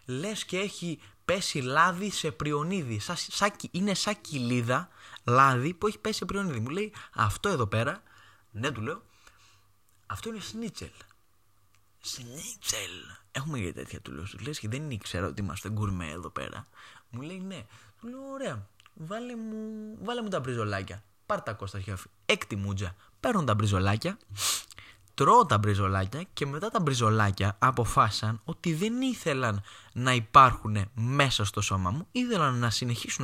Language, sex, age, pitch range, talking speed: Greek, male, 20-39, 105-165 Hz, 145 wpm